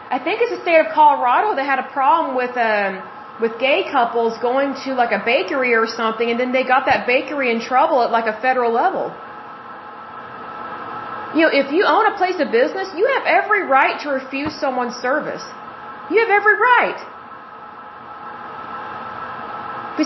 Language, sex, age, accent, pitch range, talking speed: Hindi, female, 30-49, American, 255-315 Hz, 175 wpm